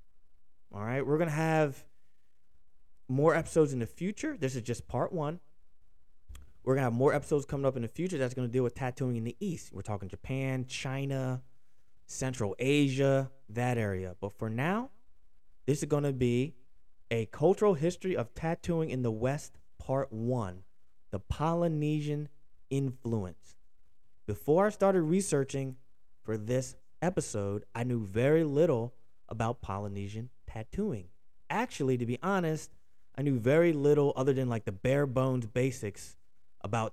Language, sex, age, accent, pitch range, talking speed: English, male, 20-39, American, 110-150 Hz, 155 wpm